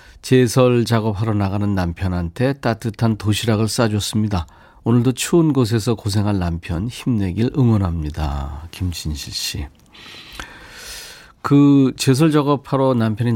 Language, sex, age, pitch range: Korean, male, 40-59, 100-130 Hz